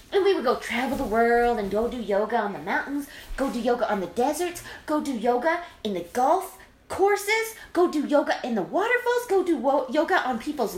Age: 20-39